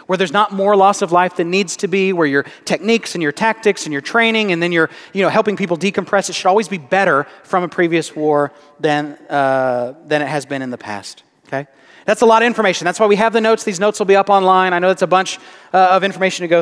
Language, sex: English, male